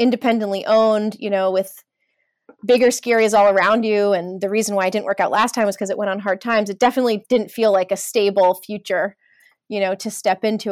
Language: English